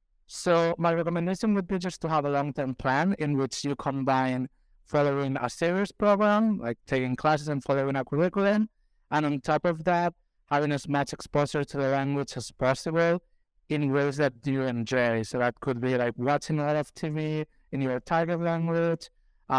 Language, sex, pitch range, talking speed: English, male, 130-155 Hz, 180 wpm